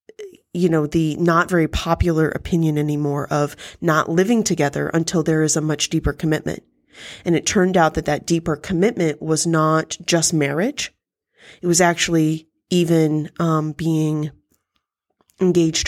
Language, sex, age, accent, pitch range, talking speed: English, female, 30-49, American, 155-180 Hz, 145 wpm